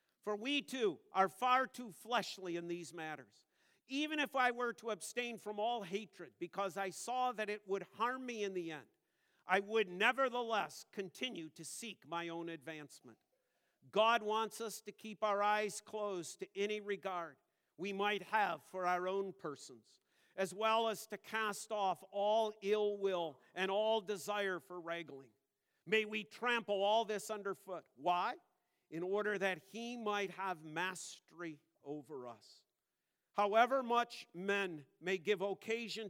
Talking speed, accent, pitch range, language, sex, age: 155 wpm, American, 170-215 Hz, English, male, 50-69